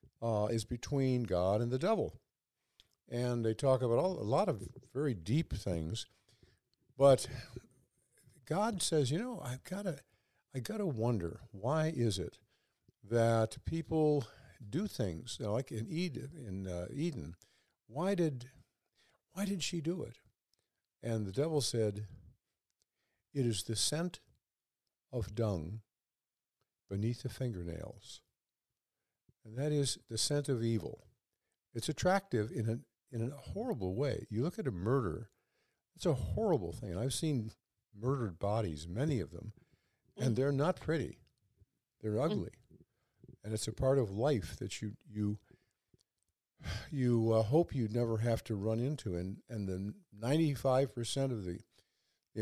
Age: 60-79